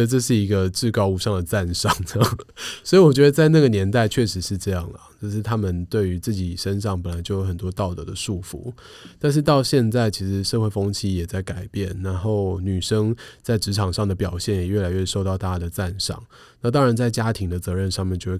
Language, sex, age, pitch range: Chinese, male, 20-39, 90-115 Hz